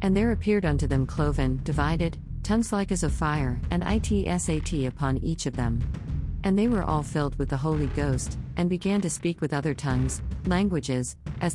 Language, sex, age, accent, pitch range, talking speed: English, female, 50-69, American, 130-165 Hz, 185 wpm